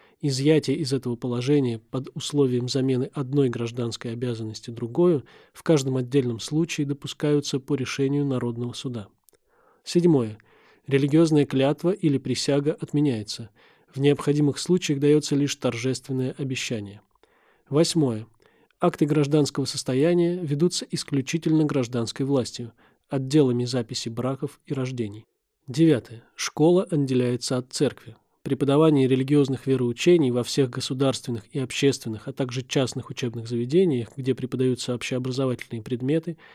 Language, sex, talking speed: Russian, male, 110 wpm